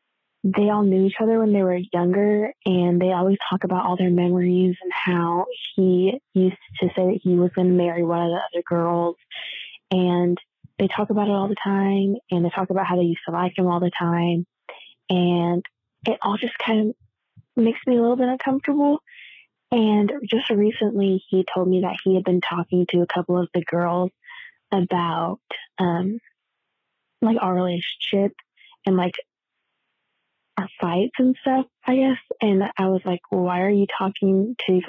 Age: 20-39